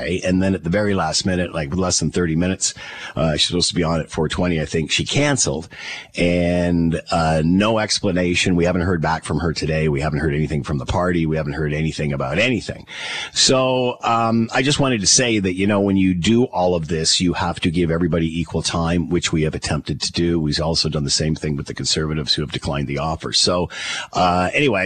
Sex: male